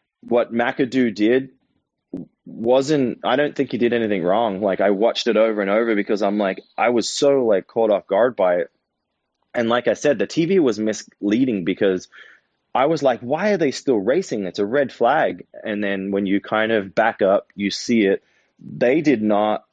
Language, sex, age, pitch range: English, male, 20-39, 95-120 Hz